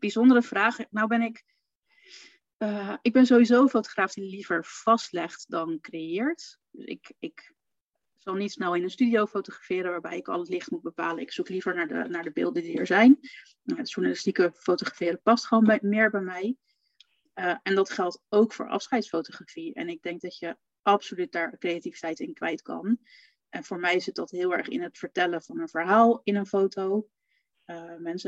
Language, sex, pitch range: Dutch, female, 180-235 Hz